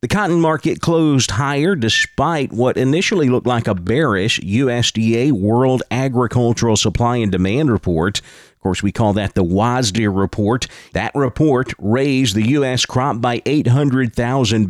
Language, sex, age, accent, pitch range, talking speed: English, male, 40-59, American, 110-140 Hz, 145 wpm